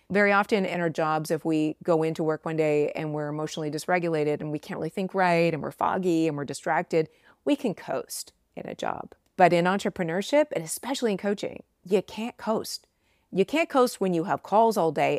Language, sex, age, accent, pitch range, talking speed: English, female, 30-49, American, 155-195 Hz, 210 wpm